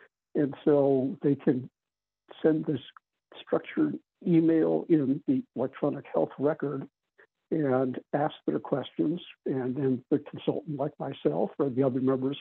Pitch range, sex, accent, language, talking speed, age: 135-155 Hz, male, American, English, 130 wpm, 60-79